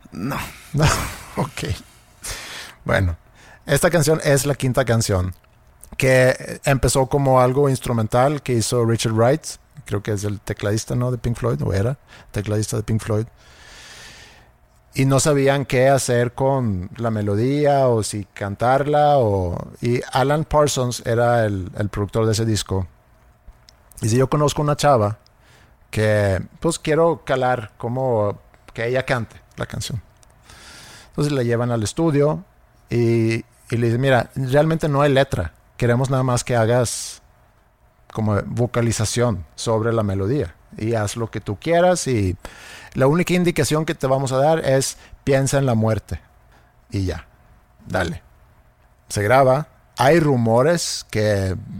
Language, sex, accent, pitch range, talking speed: Spanish, male, Mexican, 105-135 Hz, 145 wpm